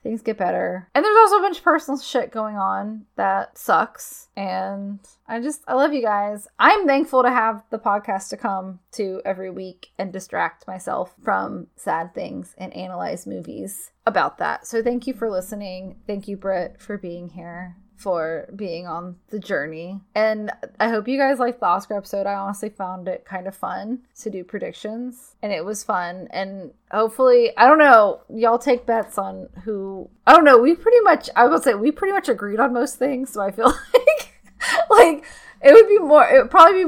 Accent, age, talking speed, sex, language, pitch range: American, 10-29, 200 wpm, female, English, 200-275 Hz